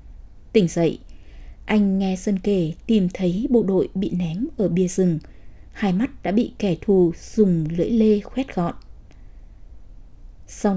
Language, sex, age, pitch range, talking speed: Vietnamese, female, 20-39, 175-235 Hz, 150 wpm